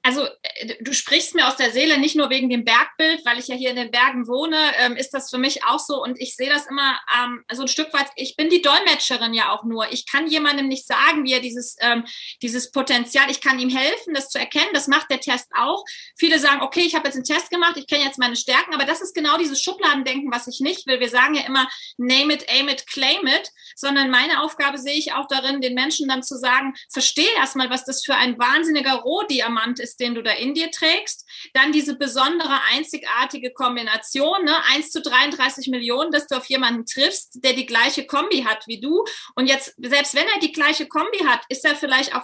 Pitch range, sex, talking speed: 255-300 Hz, female, 225 wpm